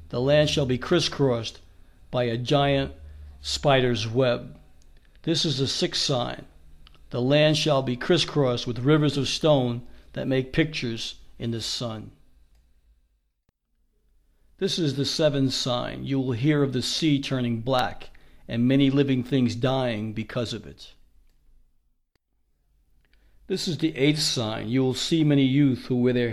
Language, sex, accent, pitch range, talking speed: English, male, American, 115-140 Hz, 145 wpm